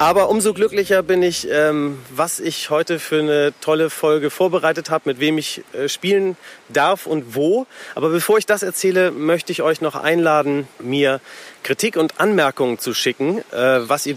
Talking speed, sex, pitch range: 180 wpm, male, 130-180 Hz